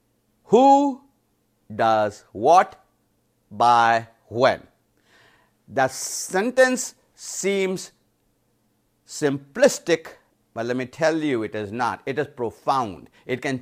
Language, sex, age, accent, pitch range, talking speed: English, male, 50-69, Indian, 125-190 Hz, 95 wpm